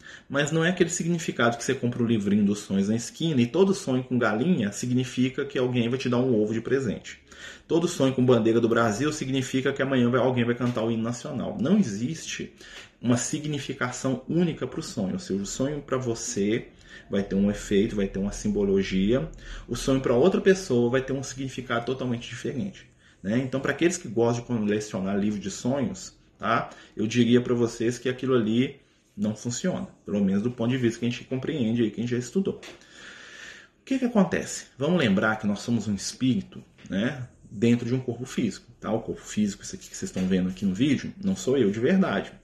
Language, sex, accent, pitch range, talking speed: Portuguese, male, Brazilian, 110-140 Hz, 210 wpm